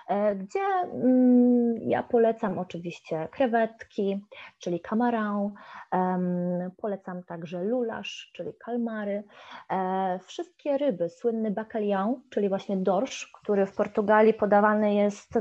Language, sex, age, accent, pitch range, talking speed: Polish, female, 20-39, native, 190-225 Hz, 95 wpm